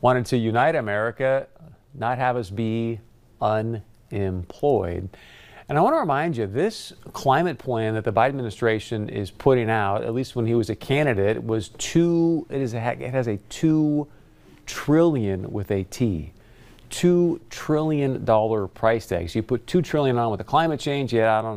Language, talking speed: English, 170 wpm